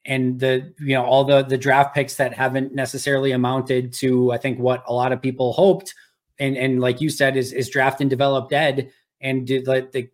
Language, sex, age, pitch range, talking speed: English, male, 20-39, 130-150 Hz, 215 wpm